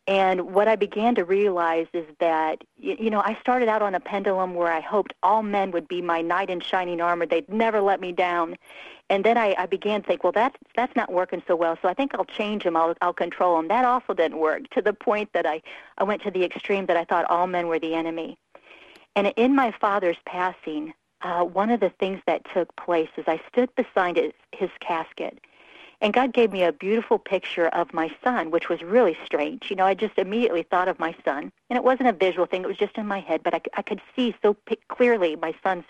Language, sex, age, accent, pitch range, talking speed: English, female, 40-59, American, 170-205 Hz, 240 wpm